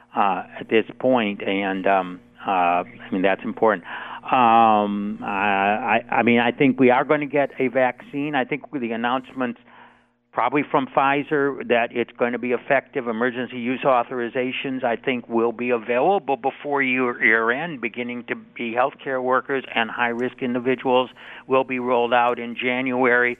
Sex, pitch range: male, 115-130 Hz